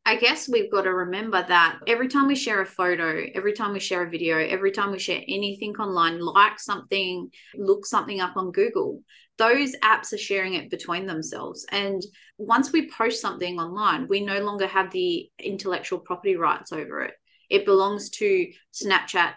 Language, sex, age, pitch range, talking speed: English, female, 30-49, 185-240 Hz, 185 wpm